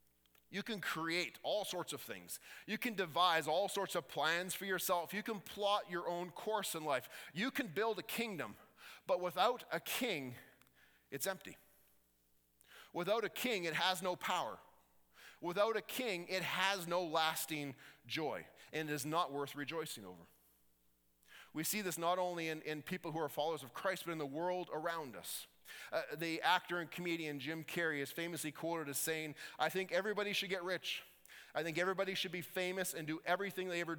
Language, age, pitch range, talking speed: English, 30-49, 145-185 Hz, 185 wpm